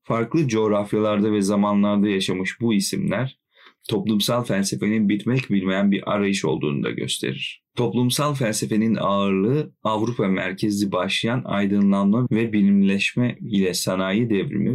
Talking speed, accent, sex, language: 115 wpm, native, male, Turkish